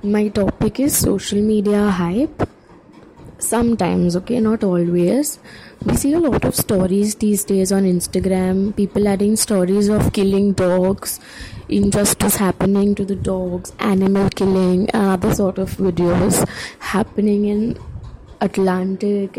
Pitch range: 195-230 Hz